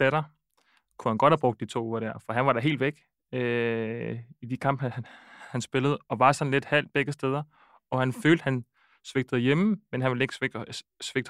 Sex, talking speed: male, 225 wpm